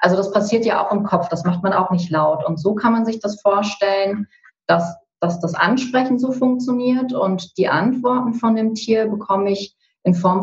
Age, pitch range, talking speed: 30-49, 175-210 Hz, 205 wpm